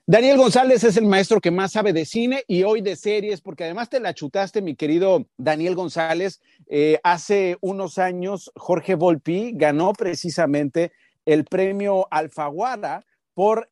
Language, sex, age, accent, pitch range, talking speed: English, male, 40-59, Mexican, 165-230 Hz, 155 wpm